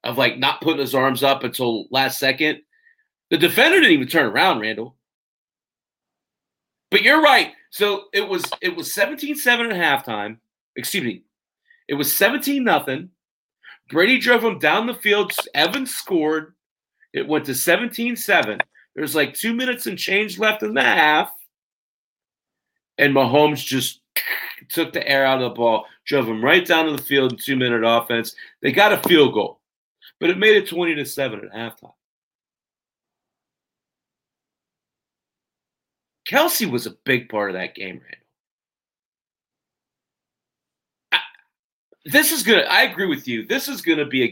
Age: 30-49